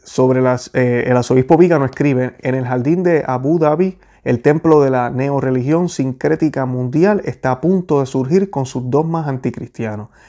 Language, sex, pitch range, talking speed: Spanish, male, 125-145 Hz, 175 wpm